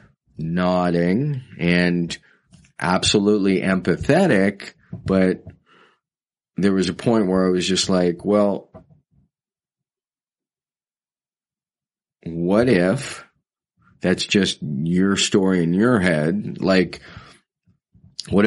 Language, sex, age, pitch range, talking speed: English, male, 40-59, 90-105 Hz, 85 wpm